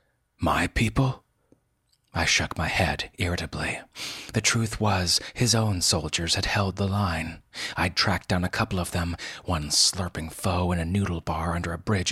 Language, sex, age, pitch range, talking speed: English, male, 30-49, 85-105 Hz, 170 wpm